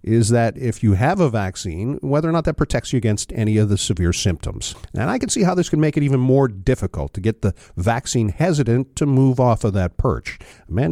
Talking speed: 240 wpm